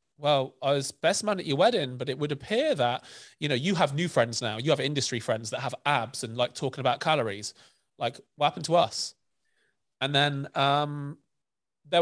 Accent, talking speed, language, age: British, 205 wpm, English, 30-49